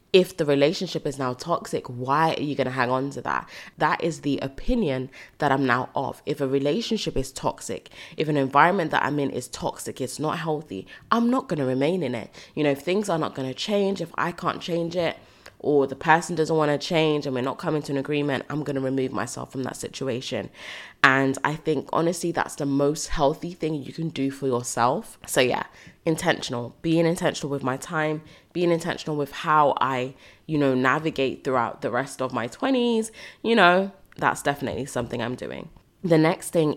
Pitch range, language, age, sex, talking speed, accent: 135-165 Hz, English, 20-39, female, 210 wpm, British